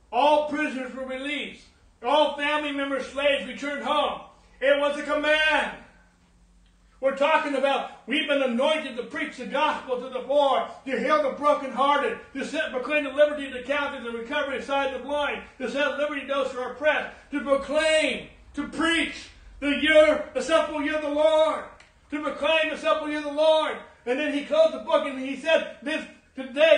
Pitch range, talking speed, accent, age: 280-315 Hz, 195 wpm, American, 60-79